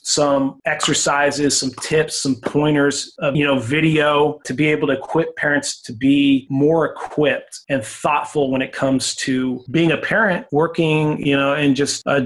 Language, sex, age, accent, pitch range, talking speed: English, male, 30-49, American, 135-150 Hz, 170 wpm